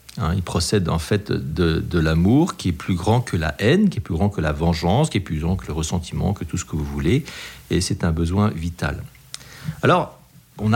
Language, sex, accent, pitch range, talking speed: French, male, French, 85-130 Hz, 235 wpm